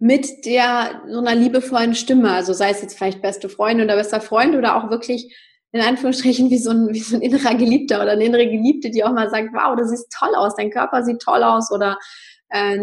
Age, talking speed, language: 20-39, 230 wpm, German